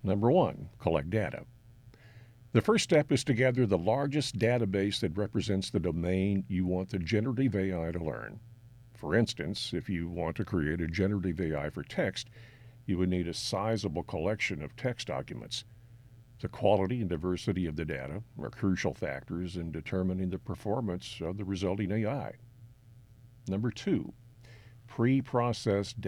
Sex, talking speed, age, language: male, 150 wpm, 50-69, English